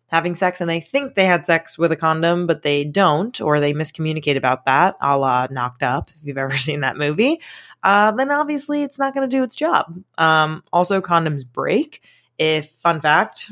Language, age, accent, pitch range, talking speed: English, 20-39, American, 145-175 Hz, 205 wpm